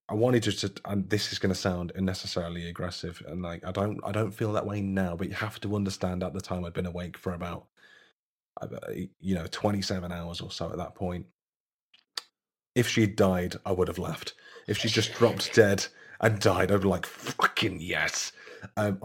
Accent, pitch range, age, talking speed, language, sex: British, 90-105 Hz, 30-49, 195 wpm, English, male